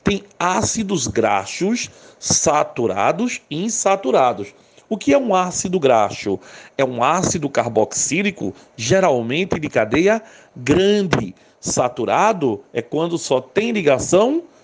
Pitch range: 140-210 Hz